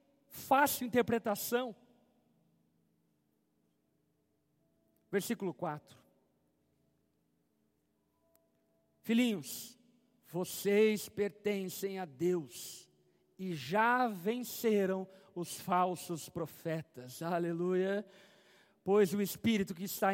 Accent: Brazilian